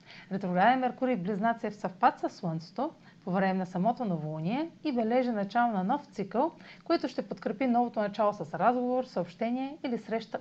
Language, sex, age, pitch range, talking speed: Bulgarian, female, 30-49, 180-240 Hz, 165 wpm